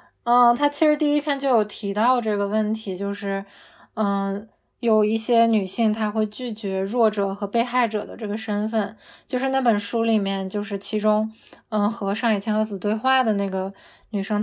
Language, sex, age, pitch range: Chinese, female, 20-39, 200-230 Hz